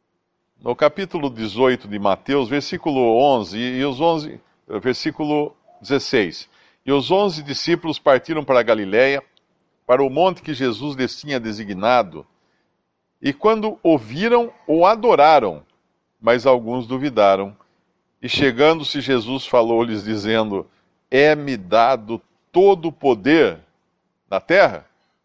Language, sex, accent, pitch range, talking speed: Portuguese, male, Brazilian, 130-180 Hz, 115 wpm